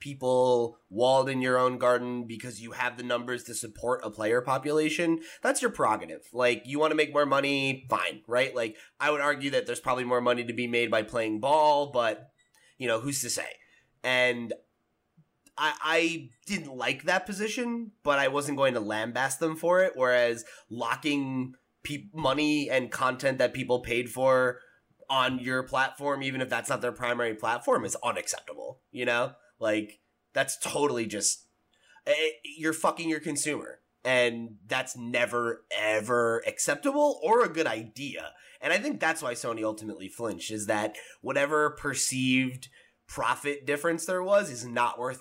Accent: American